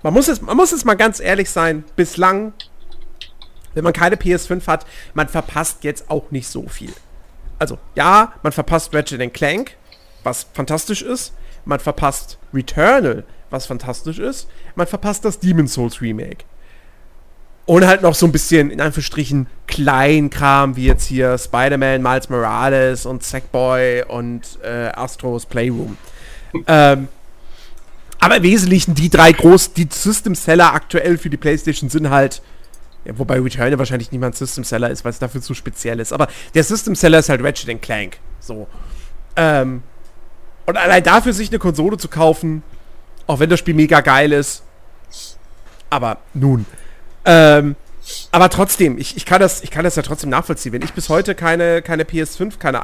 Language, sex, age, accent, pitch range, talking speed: German, male, 40-59, German, 125-170 Hz, 160 wpm